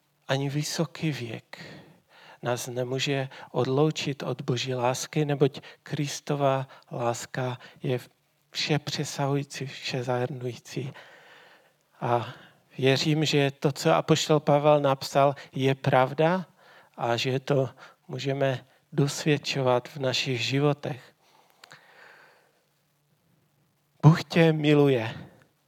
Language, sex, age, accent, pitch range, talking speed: Czech, male, 40-59, native, 130-155 Hz, 90 wpm